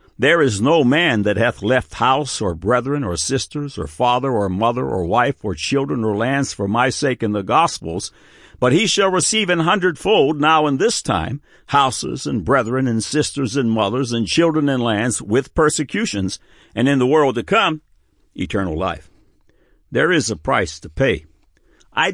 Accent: American